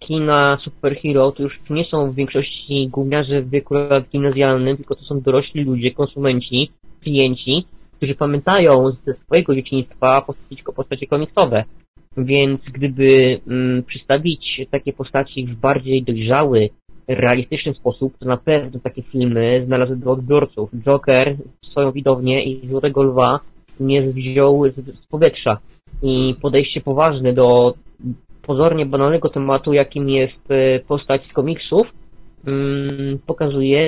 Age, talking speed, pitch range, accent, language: 20-39, 120 wpm, 130-145 Hz, native, Polish